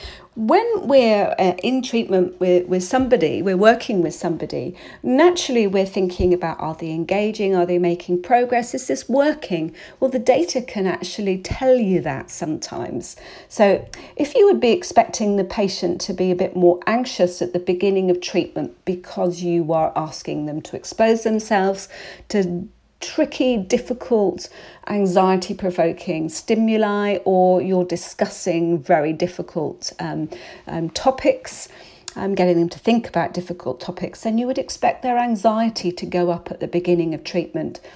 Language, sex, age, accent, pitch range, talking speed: English, female, 40-59, British, 175-240 Hz, 155 wpm